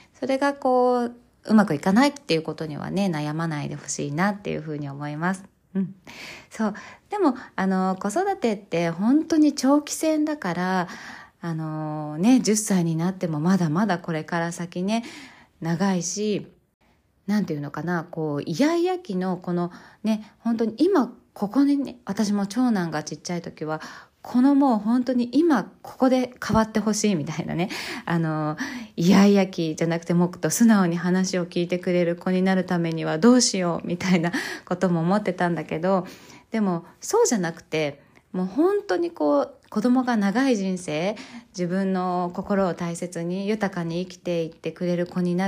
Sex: female